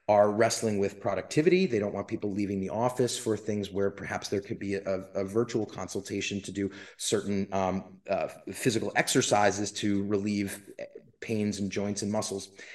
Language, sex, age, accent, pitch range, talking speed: English, male, 30-49, American, 100-130 Hz, 170 wpm